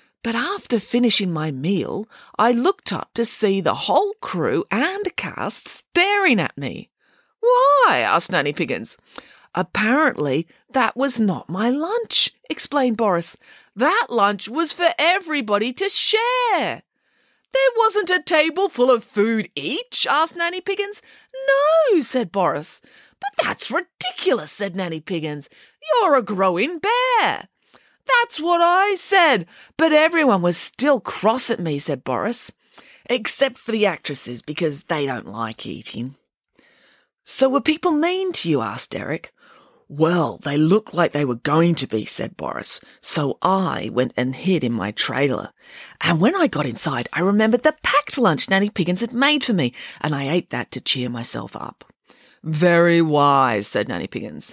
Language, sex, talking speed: English, female, 155 wpm